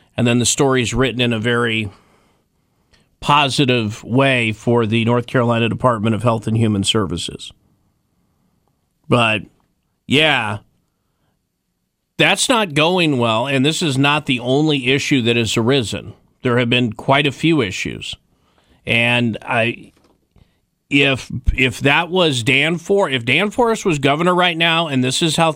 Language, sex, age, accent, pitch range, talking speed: English, male, 40-59, American, 120-155 Hz, 150 wpm